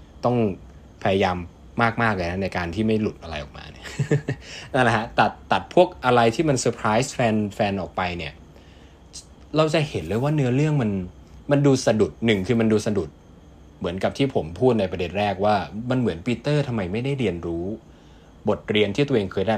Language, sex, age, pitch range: Thai, male, 20-39, 80-120 Hz